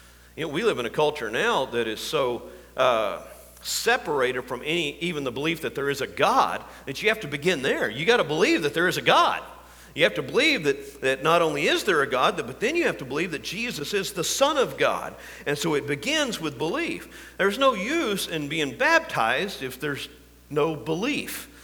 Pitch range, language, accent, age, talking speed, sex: 135-220 Hz, English, American, 50-69, 220 wpm, male